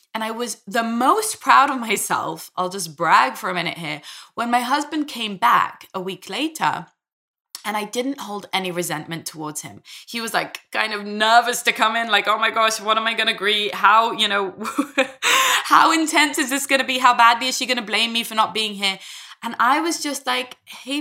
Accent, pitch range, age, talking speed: British, 190-270 Hz, 20-39, 225 wpm